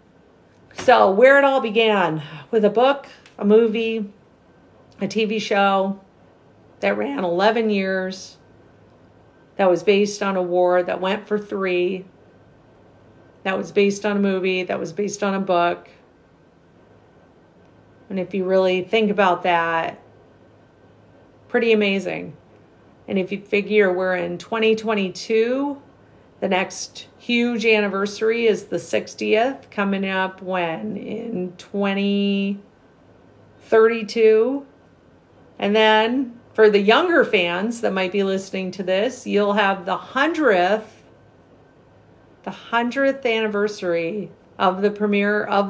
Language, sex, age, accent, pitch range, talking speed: English, female, 40-59, American, 185-220 Hz, 120 wpm